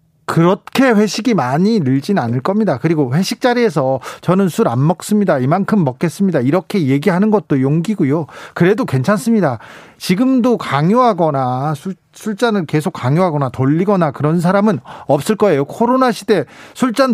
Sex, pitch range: male, 145-200 Hz